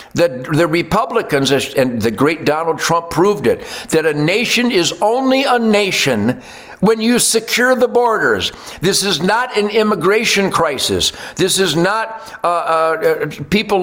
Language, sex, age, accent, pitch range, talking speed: English, male, 60-79, American, 150-210 Hz, 150 wpm